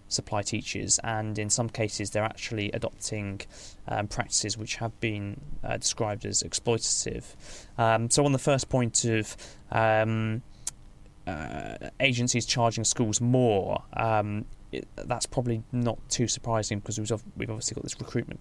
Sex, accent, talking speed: male, British, 145 wpm